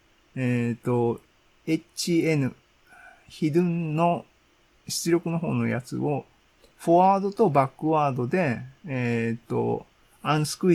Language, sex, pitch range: Japanese, male, 120-175 Hz